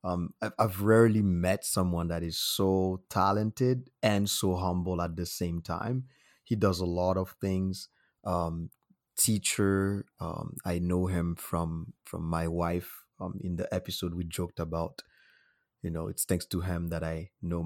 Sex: male